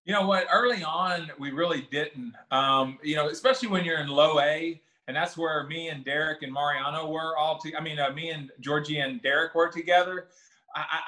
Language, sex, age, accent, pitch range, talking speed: English, male, 20-39, American, 145-170 Hz, 210 wpm